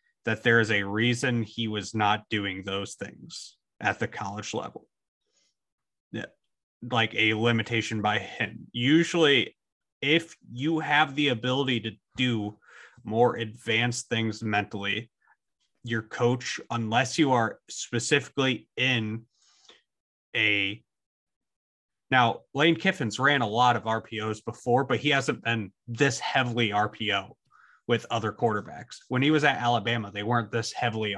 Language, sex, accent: English, male, American